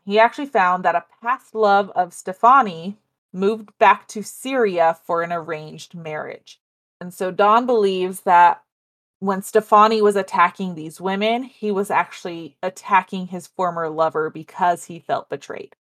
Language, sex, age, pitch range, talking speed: English, female, 30-49, 175-220 Hz, 150 wpm